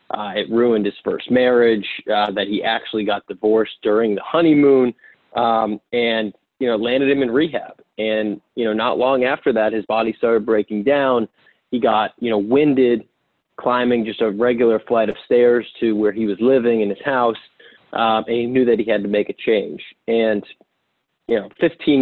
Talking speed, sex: 190 wpm, male